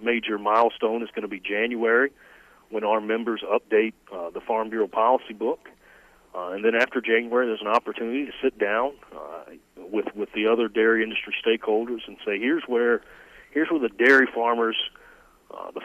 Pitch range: 105-120 Hz